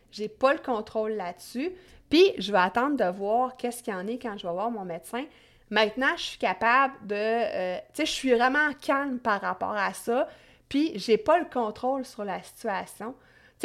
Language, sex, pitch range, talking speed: French, female, 195-250 Hz, 205 wpm